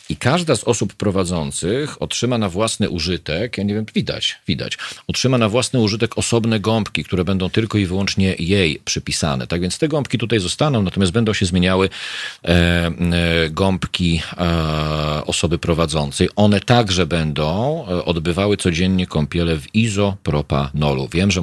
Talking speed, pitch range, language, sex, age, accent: 140 wpm, 75-95 Hz, Polish, male, 40-59, native